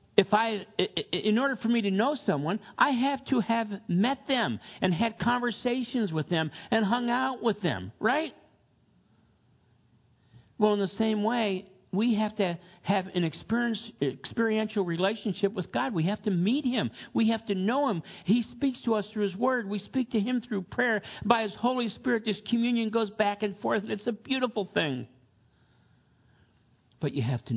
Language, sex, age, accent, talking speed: English, male, 50-69, American, 180 wpm